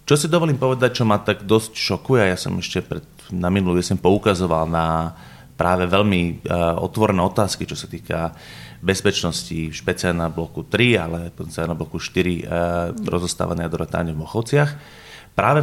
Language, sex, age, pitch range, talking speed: Slovak, male, 30-49, 90-110 Hz, 160 wpm